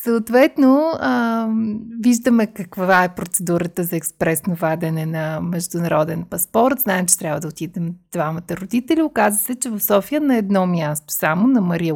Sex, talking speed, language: female, 150 wpm, Bulgarian